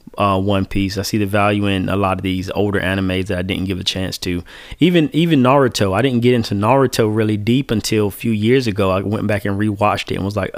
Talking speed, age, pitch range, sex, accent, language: 255 wpm, 20-39, 100-120 Hz, male, American, English